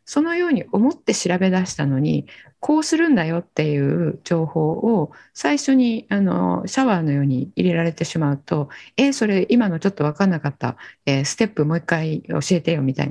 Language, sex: Japanese, female